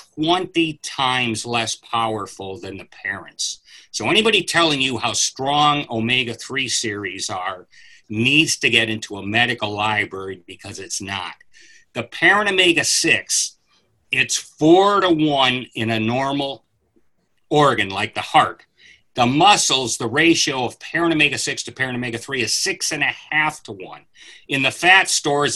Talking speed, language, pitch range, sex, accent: 135 wpm, English, 115-160 Hz, male, American